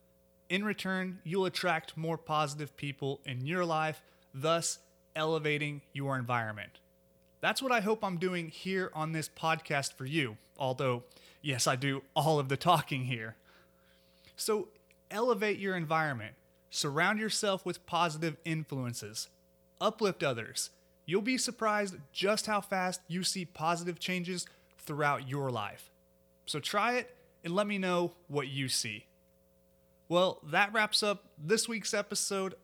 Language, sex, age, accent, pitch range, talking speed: English, male, 30-49, American, 130-190 Hz, 140 wpm